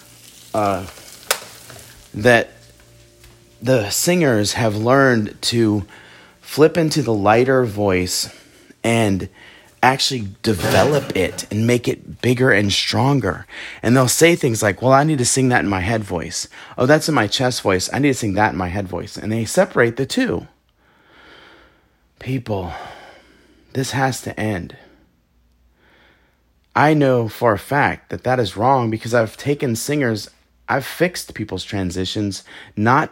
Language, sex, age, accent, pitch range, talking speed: English, male, 30-49, American, 105-135 Hz, 145 wpm